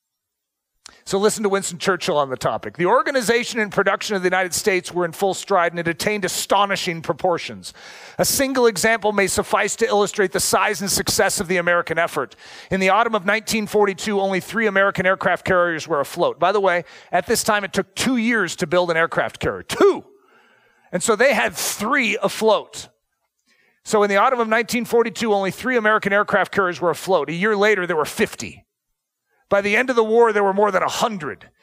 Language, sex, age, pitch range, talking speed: English, male, 40-59, 180-225 Hz, 195 wpm